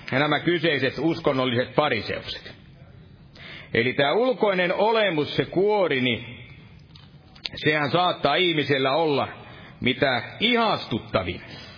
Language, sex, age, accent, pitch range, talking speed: Finnish, male, 50-69, native, 145-180 Hz, 90 wpm